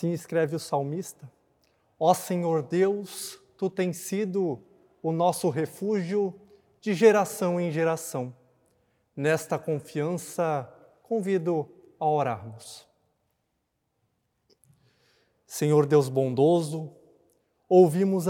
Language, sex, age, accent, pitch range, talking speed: Portuguese, male, 20-39, Brazilian, 135-185 Hz, 85 wpm